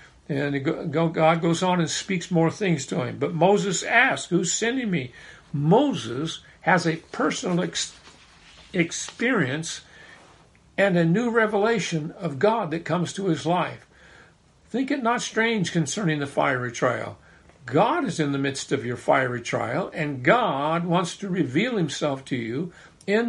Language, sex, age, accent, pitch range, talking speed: English, male, 50-69, American, 155-200 Hz, 150 wpm